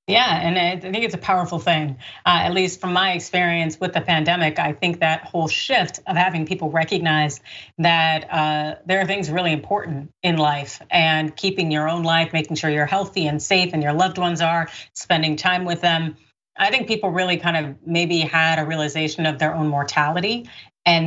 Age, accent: 30-49, American